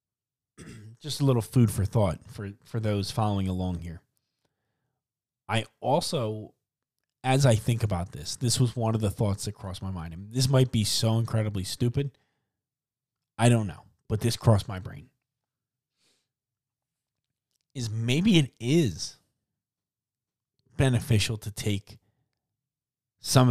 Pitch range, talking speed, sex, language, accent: 105-130 Hz, 130 wpm, male, English, American